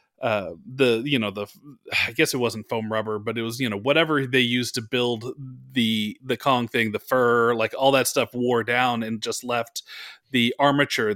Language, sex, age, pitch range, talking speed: English, male, 30-49, 110-135 Hz, 205 wpm